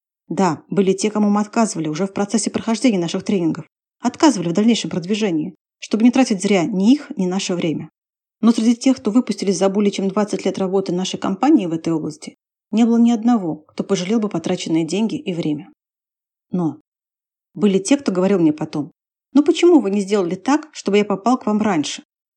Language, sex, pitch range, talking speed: Russian, female, 190-240 Hz, 190 wpm